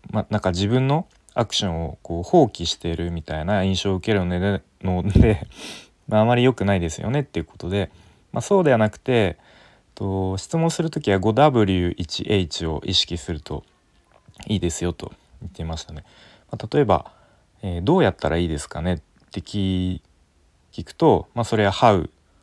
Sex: male